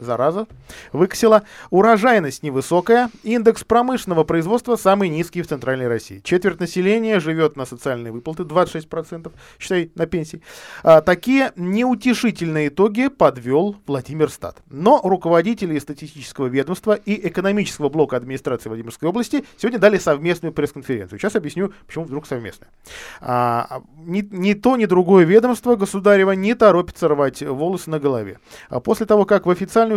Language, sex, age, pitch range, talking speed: Russian, male, 20-39, 145-210 Hz, 130 wpm